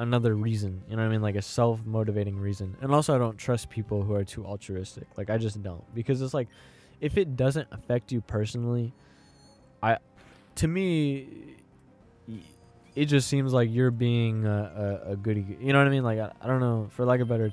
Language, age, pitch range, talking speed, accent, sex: English, 20-39, 105-135 Hz, 205 wpm, American, male